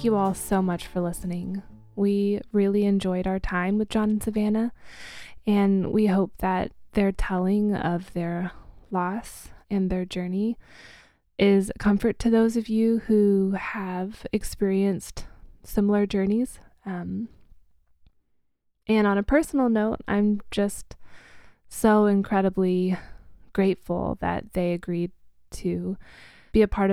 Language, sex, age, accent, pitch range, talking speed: English, female, 20-39, American, 185-215 Hz, 125 wpm